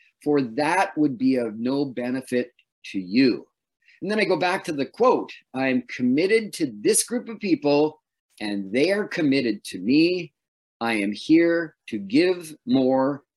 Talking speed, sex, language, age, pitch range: 165 wpm, male, English, 50-69, 125-185 Hz